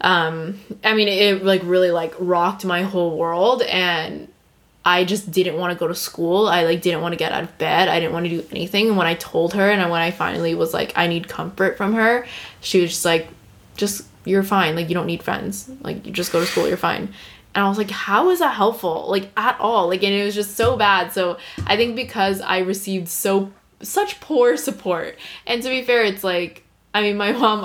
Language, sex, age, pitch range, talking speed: English, female, 10-29, 175-220 Hz, 235 wpm